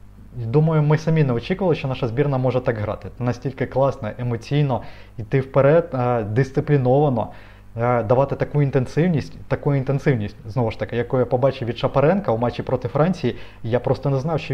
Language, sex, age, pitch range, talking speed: Ukrainian, male, 20-39, 120-140 Hz, 160 wpm